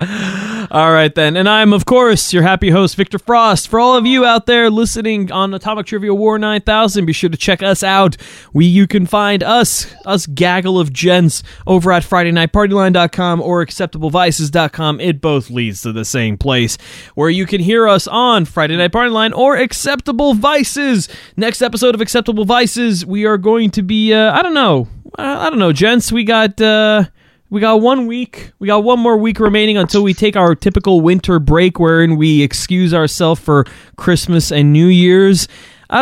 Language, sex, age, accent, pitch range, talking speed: English, male, 20-39, American, 165-220 Hz, 190 wpm